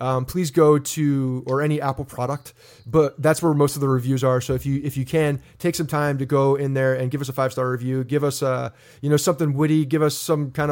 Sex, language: male, English